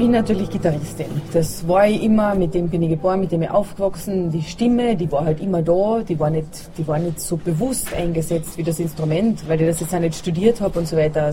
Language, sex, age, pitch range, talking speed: German, female, 20-39, 170-205 Hz, 240 wpm